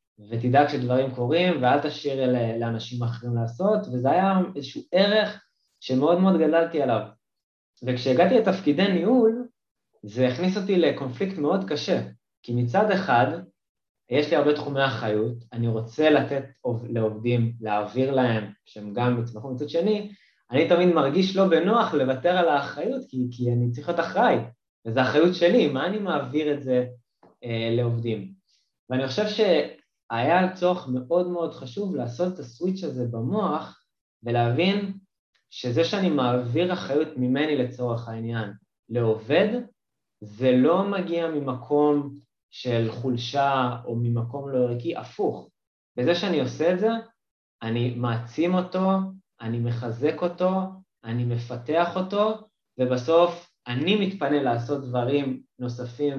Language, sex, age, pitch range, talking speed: Hebrew, male, 20-39, 120-175 Hz, 130 wpm